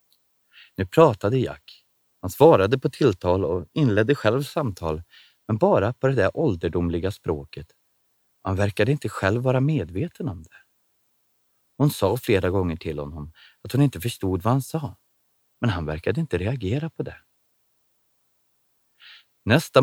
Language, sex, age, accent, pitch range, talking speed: Swedish, male, 30-49, native, 90-140 Hz, 140 wpm